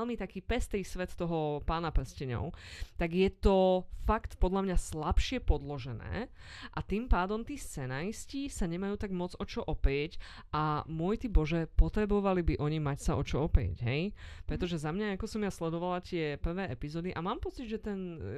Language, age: Slovak, 20-39